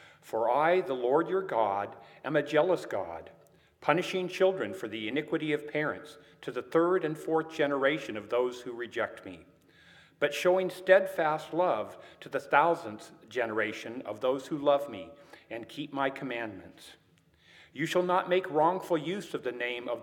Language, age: English, 50-69